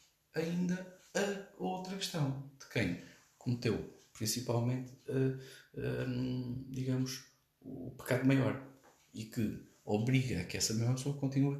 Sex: male